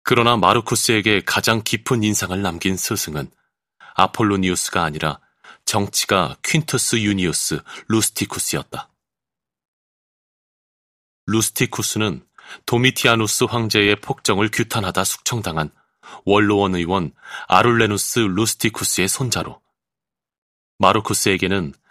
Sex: male